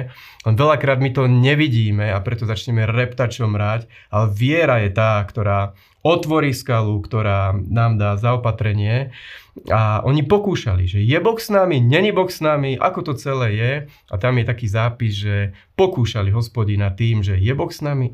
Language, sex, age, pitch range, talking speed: Slovak, male, 30-49, 110-130 Hz, 165 wpm